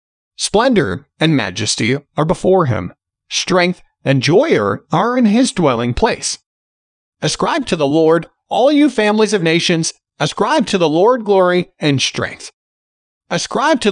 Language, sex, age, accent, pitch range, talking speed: English, male, 40-59, American, 130-215 Hz, 140 wpm